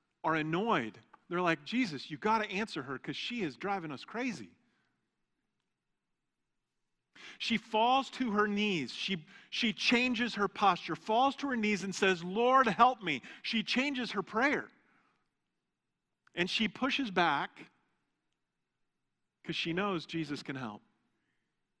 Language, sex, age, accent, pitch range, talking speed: English, male, 40-59, American, 170-215 Hz, 135 wpm